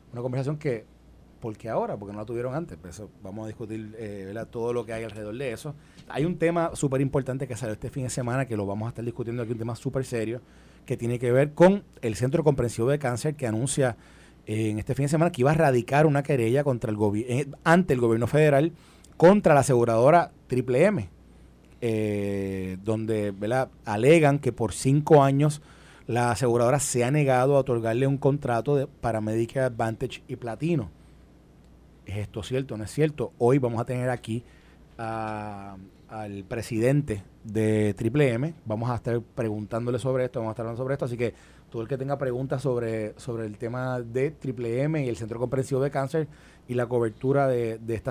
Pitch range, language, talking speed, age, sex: 110-135 Hz, Spanish, 200 wpm, 30-49, male